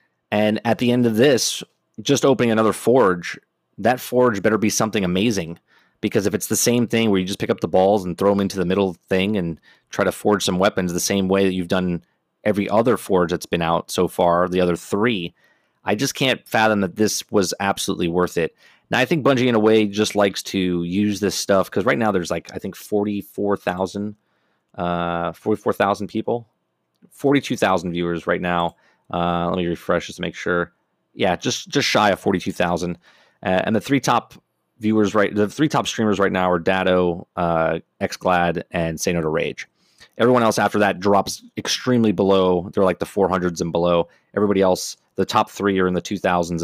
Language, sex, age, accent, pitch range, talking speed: English, male, 30-49, American, 90-110 Hz, 200 wpm